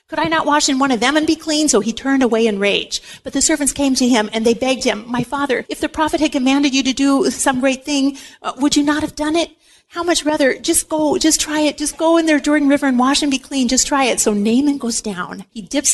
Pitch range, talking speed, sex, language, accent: 225-300 Hz, 280 wpm, female, English, American